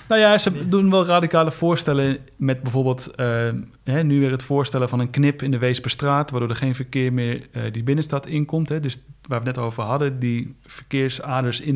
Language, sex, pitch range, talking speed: Dutch, male, 120-135 Hz, 200 wpm